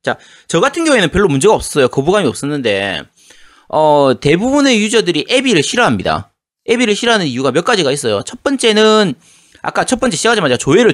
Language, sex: Korean, male